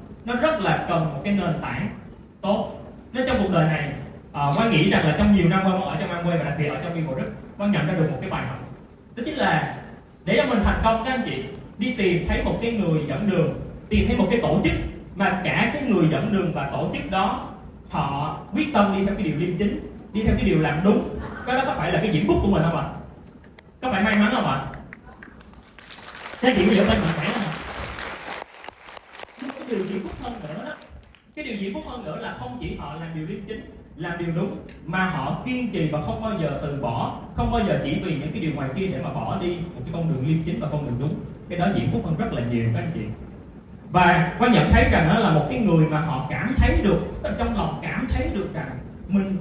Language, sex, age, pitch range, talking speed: Vietnamese, male, 20-39, 160-210 Hz, 245 wpm